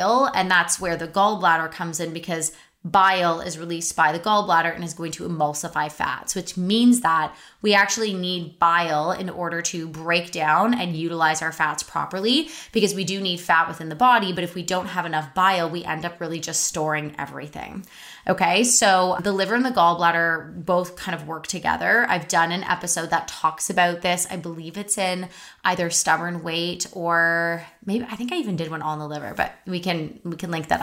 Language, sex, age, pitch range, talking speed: English, female, 20-39, 165-190 Hz, 200 wpm